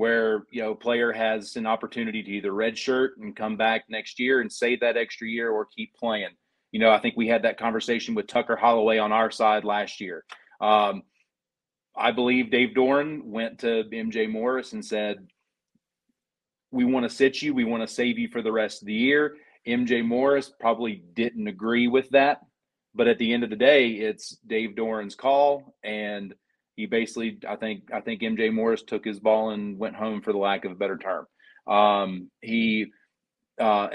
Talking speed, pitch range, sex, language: 195 wpm, 110-130 Hz, male, English